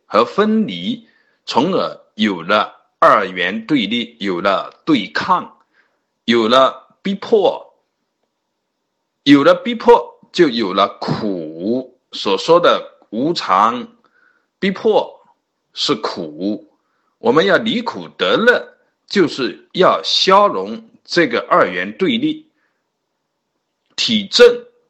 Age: 50-69